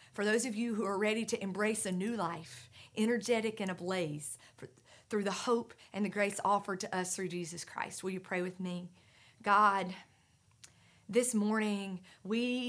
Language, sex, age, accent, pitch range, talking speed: English, female, 40-59, American, 125-205 Hz, 170 wpm